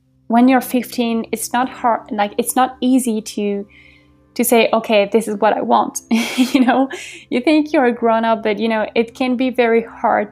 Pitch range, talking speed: 205-240 Hz, 200 wpm